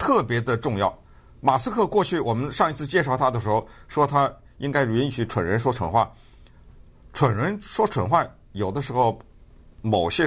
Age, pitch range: 50-69, 105-150 Hz